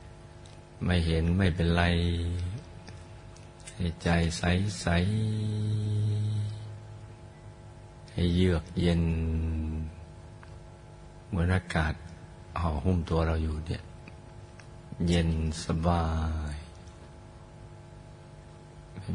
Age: 60-79